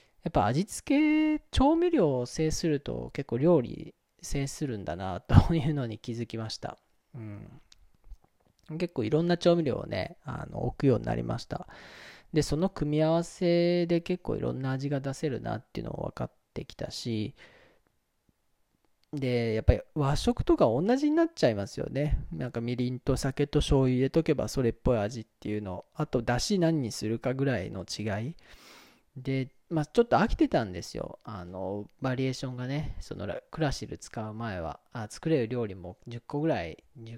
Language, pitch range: Japanese, 110-155 Hz